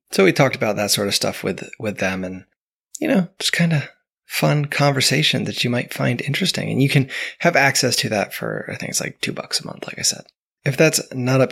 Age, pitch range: 20-39, 105-145 Hz